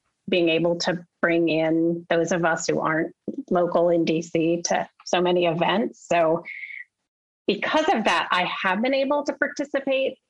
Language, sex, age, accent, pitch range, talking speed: English, female, 30-49, American, 170-210 Hz, 155 wpm